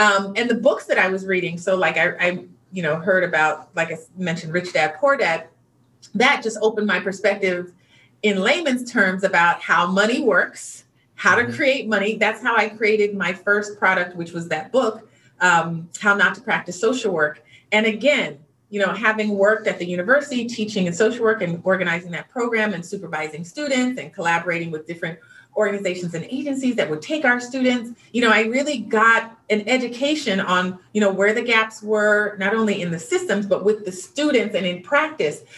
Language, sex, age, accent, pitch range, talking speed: English, female, 30-49, American, 180-240 Hz, 195 wpm